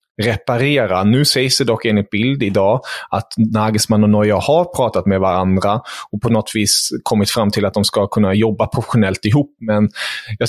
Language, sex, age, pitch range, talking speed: English, male, 20-39, 105-125 Hz, 175 wpm